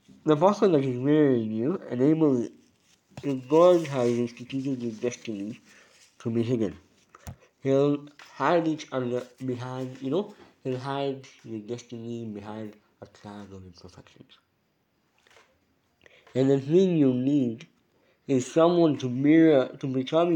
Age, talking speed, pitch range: 50-69, 120 wpm, 115-140 Hz